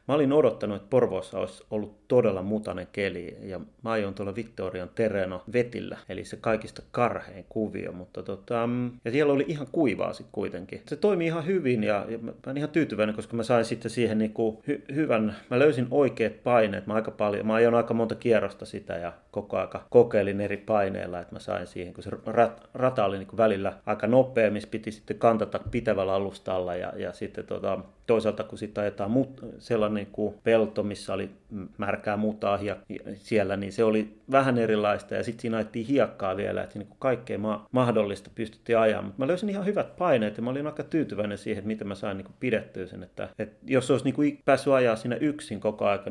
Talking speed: 200 wpm